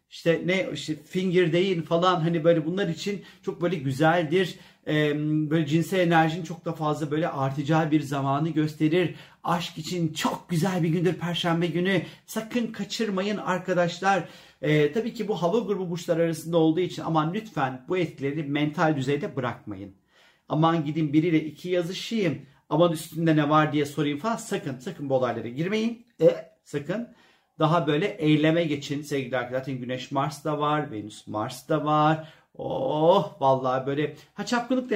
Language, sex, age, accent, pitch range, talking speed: Turkish, male, 40-59, native, 150-180 Hz, 155 wpm